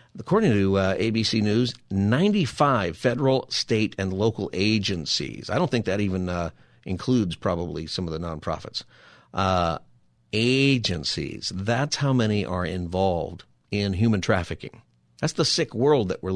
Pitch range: 90-125 Hz